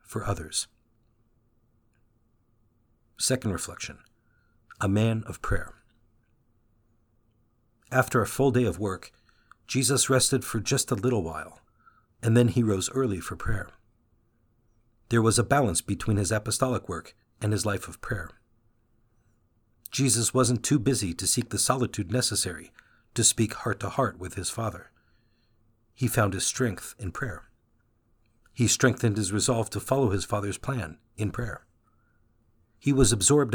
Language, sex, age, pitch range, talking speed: English, male, 50-69, 105-120 Hz, 140 wpm